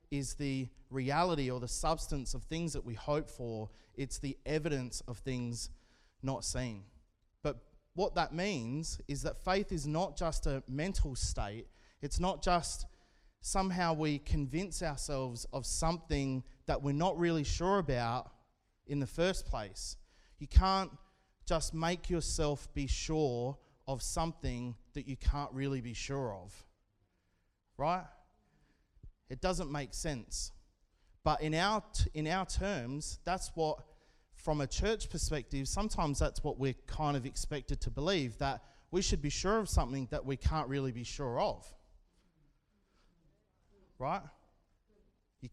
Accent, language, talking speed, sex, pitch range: Australian, English, 145 wpm, male, 120-165 Hz